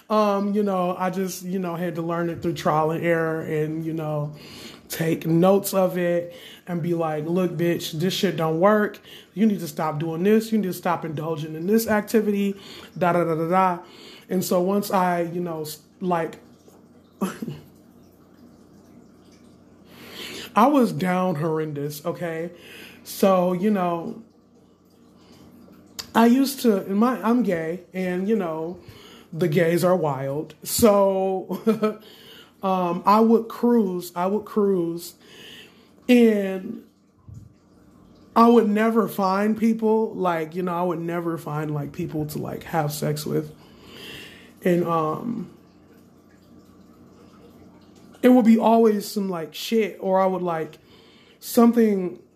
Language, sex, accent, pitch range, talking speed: English, male, American, 160-200 Hz, 140 wpm